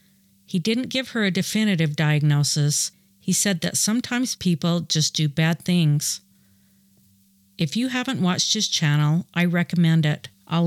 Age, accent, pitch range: 50-69, American, 145-190 Hz